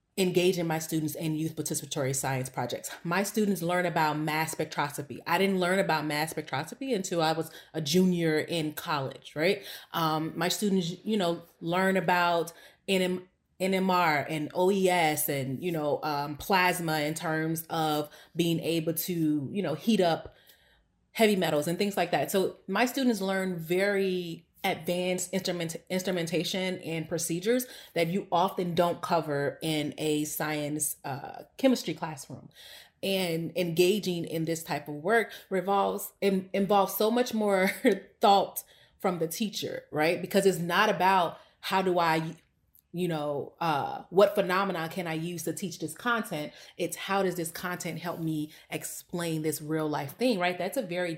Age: 30-49